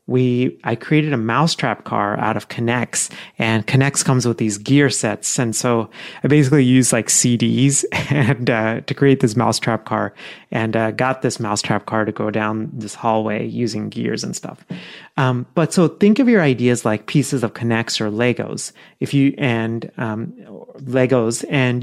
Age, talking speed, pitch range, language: 30-49, 175 wpm, 115-150 Hz, English